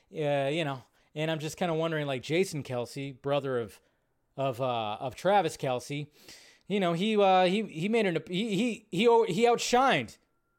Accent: American